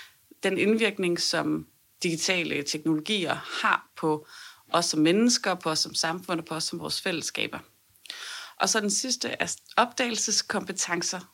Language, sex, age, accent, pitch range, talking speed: Danish, female, 30-49, native, 170-205 Hz, 140 wpm